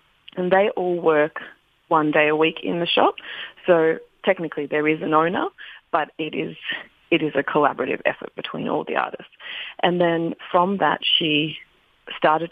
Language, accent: English, Australian